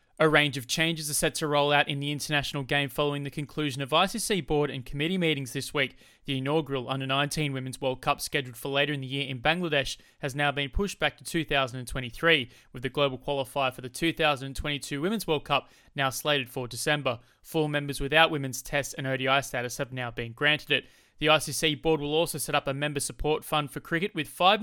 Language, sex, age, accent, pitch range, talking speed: English, male, 20-39, Australian, 135-155 Hz, 210 wpm